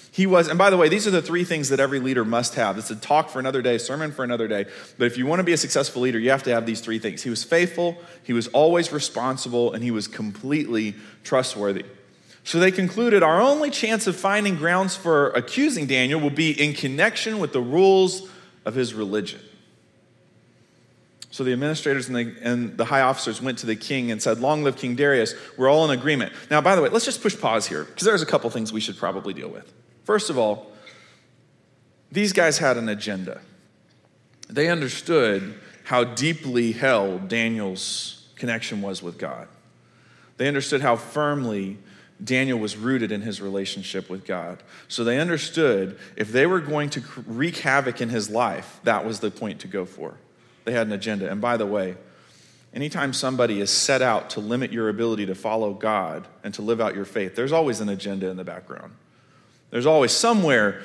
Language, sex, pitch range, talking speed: English, male, 110-155 Hz, 200 wpm